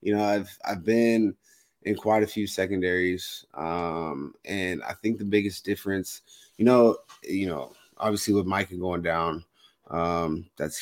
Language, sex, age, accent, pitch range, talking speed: English, male, 20-39, American, 90-105 Hz, 155 wpm